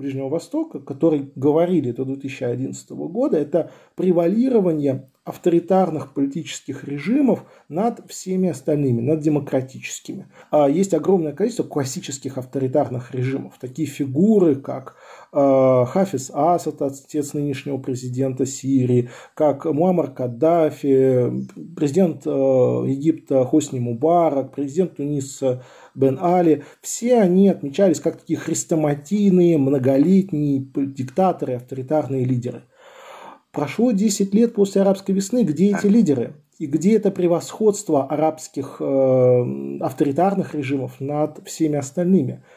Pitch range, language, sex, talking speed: 135-180 Hz, Russian, male, 105 wpm